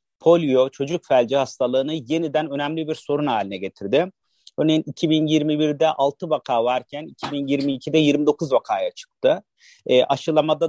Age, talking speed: 40-59, 120 wpm